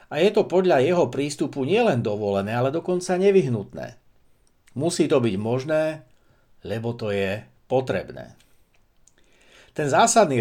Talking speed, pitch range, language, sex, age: 120 wpm, 120-165 Hz, Slovak, male, 60-79